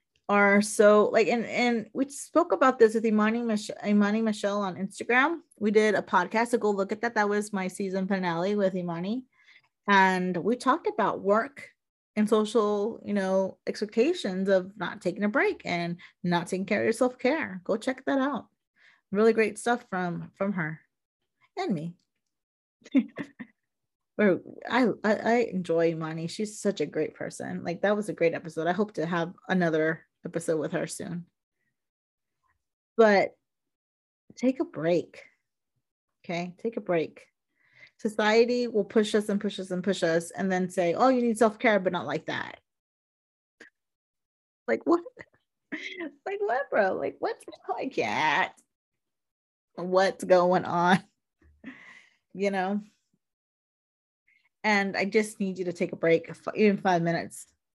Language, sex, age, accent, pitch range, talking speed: English, female, 30-49, American, 180-230 Hz, 155 wpm